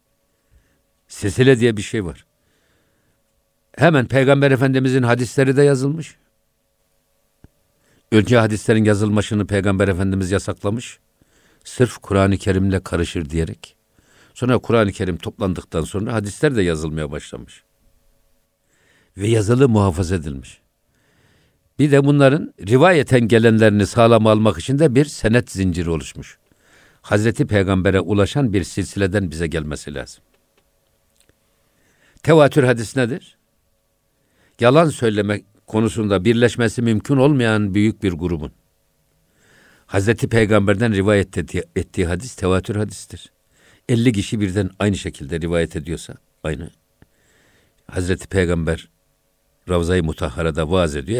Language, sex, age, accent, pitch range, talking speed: Turkish, male, 60-79, native, 95-120 Hz, 110 wpm